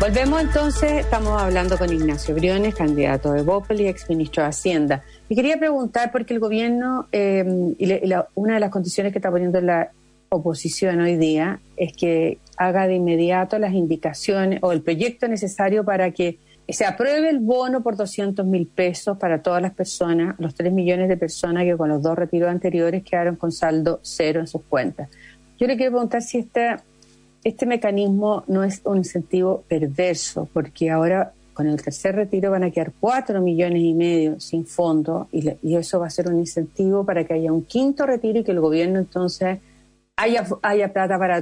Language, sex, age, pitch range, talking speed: Spanish, female, 40-59, 170-205 Hz, 185 wpm